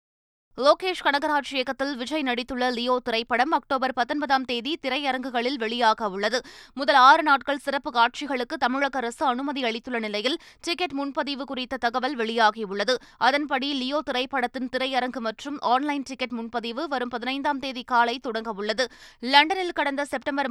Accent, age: native, 20-39